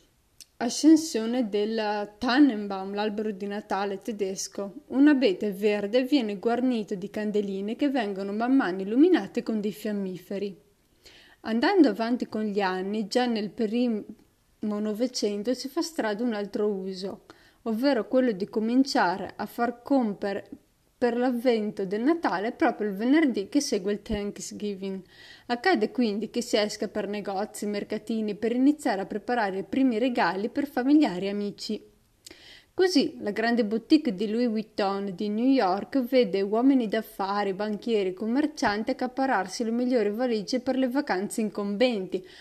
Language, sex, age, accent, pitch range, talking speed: Italian, female, 20-39, native, 205-250 Hz, 135 wpm